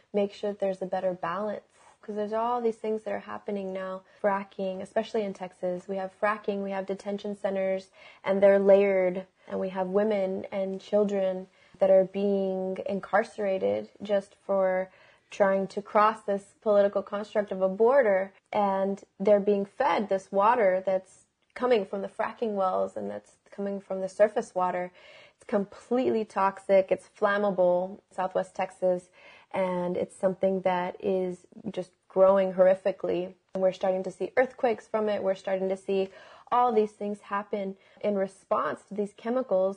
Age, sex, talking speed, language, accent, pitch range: 20-39, female, 160 wpm, English, American, 190-210 Hz